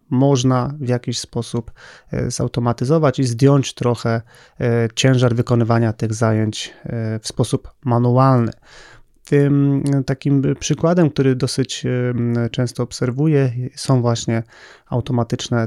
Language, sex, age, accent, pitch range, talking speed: Polish, male, 30-49, native, 120-135 Hz, 95 wpm